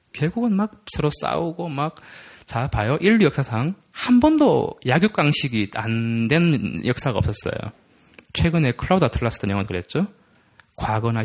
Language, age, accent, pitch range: Korean, 20-39, native, 115-195 Hz